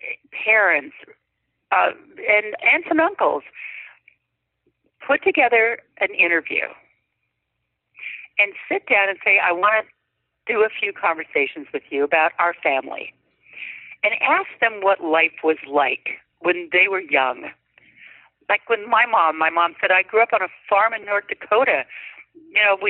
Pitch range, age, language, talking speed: 175-235 Hz, 50-69, English, 150 wpm